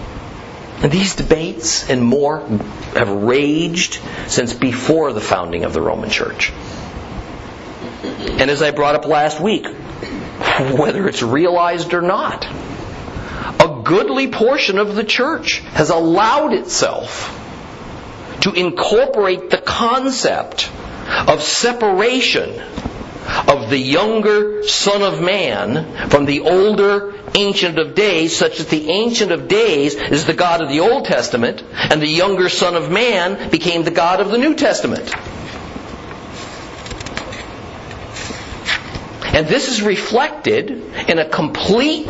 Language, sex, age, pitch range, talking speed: English, male, 50-69, 155-210 Hz, 125 wpm